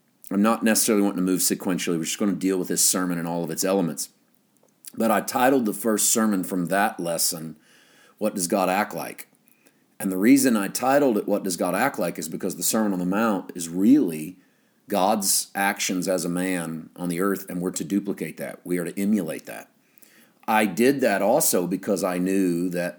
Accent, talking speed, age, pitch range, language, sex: American, 210 wpm, 40-59, 90-105 Hz, English, male